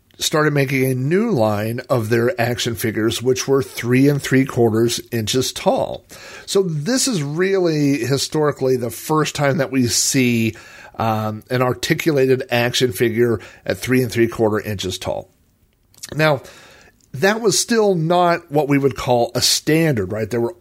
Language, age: English, 50-69